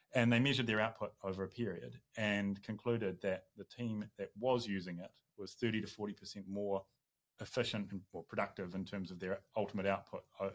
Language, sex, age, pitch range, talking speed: English, male, 30-49, 95-115 Hz, 180 wpm